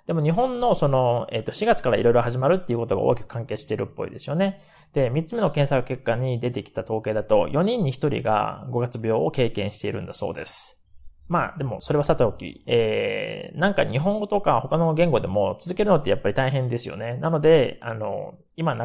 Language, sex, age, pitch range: Japanese, male, 20-39, 120-180 Hz